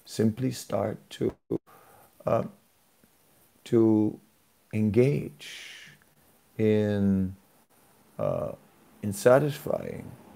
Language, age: English, 60-79